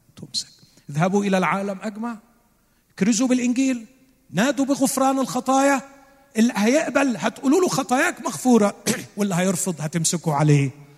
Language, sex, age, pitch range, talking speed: Arabic, male, 50-69, 145-220 Hz, 110 wpm